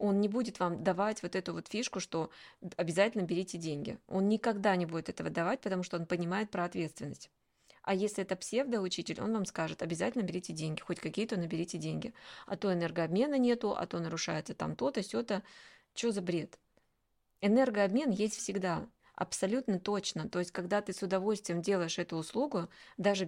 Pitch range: 175-210 Hz